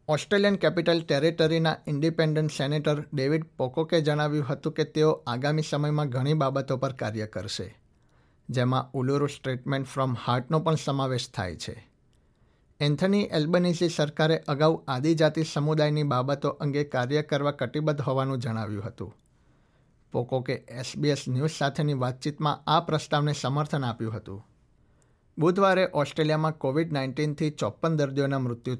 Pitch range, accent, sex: 130-155 Hz, native, male